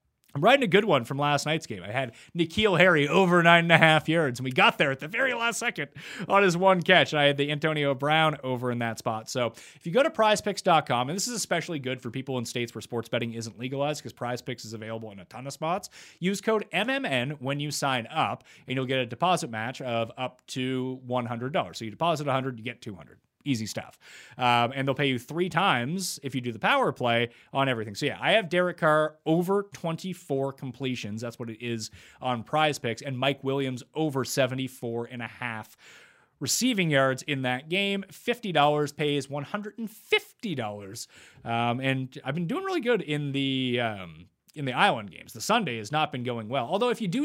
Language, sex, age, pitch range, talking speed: English, male, 30-49, 125-170 Hz, 215 wpm